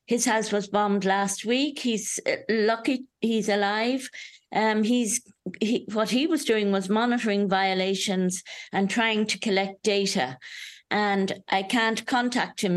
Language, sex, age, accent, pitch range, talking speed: English, female, 50-69, British, 195-235 Hz, 140 wpm